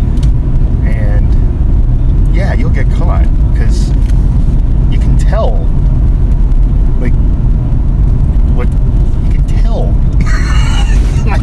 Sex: male